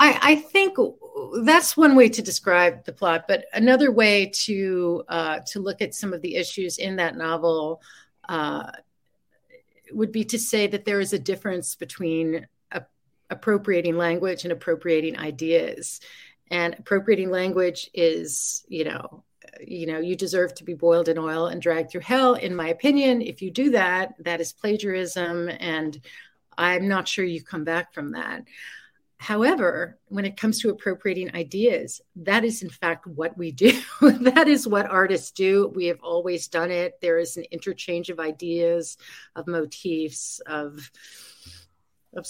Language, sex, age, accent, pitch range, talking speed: English, female, 40-59, American, 170-215 Hz, 160 wpm